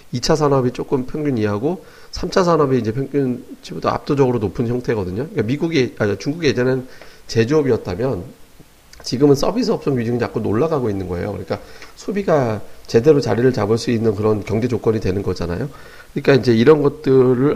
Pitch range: 110-145 Hz